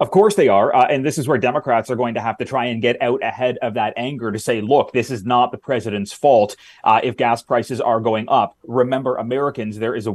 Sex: male